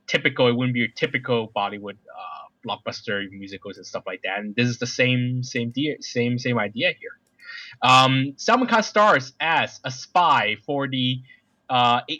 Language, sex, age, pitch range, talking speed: English, male, 20-39, 115-140 Hz, 165 wpm